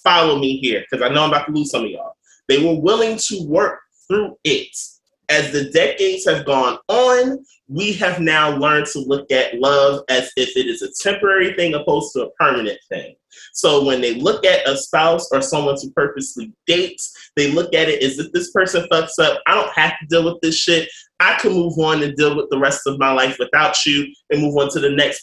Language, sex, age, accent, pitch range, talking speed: English, male, 20-39, American, 135-170 Hz, 230 wpm